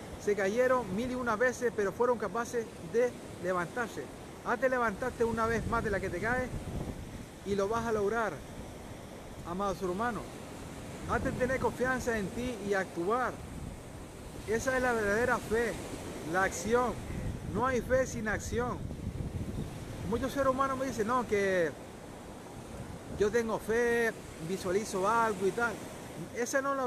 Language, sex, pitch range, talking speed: Spanish, male, 200-245 Hz, 145 wpm